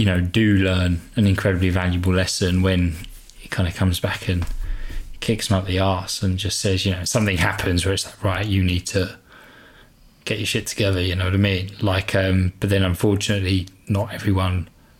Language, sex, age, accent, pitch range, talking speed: English, male, 20-39, British, 95-105 Hz, 200 wpm